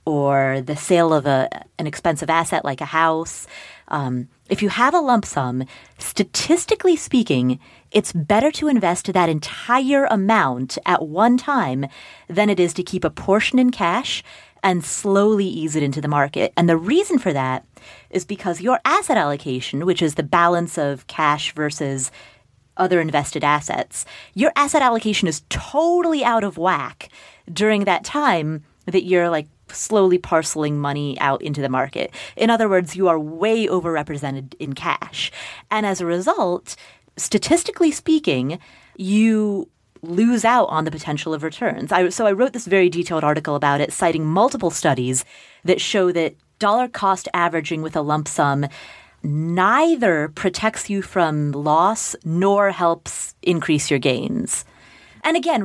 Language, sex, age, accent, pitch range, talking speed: English, female, 30-49, American, 150-215 Hz, 155 wpm